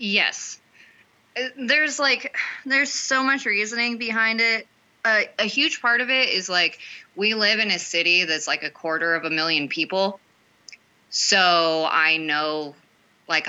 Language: English